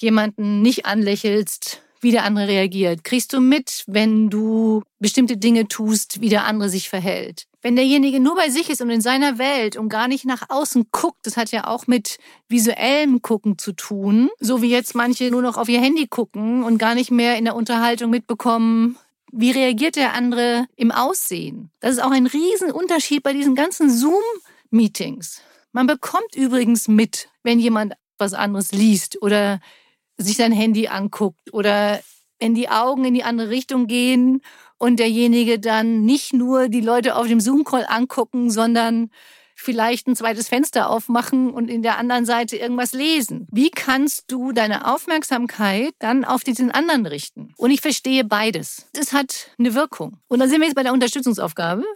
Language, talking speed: German, 175 wpm